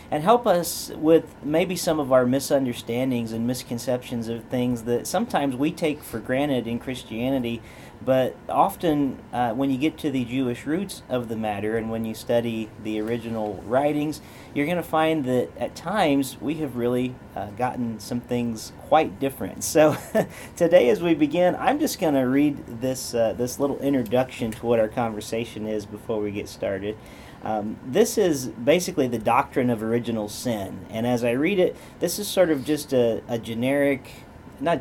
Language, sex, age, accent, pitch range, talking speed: English, male, 40-59, American, 115-140 Hz, 175 wpm